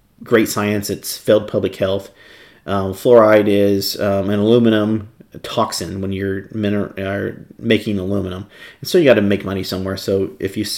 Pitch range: 100-120 Hz